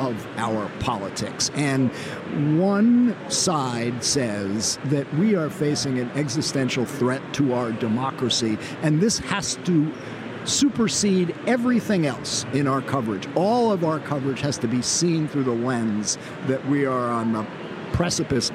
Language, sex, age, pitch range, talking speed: English, male, 50-69, 125-165 Hz, 140 wpm